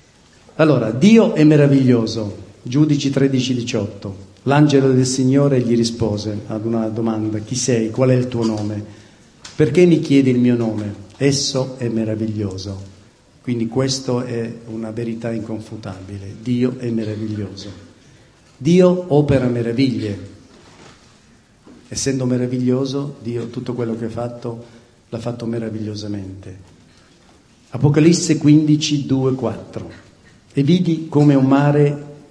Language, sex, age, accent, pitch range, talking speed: Italian, male, 50-69, native, 110-130 Hz, 115 wpm